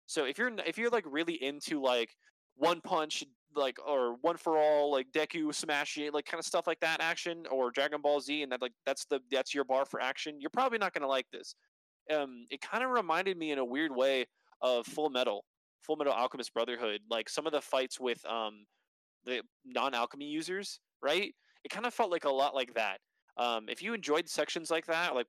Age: 20-39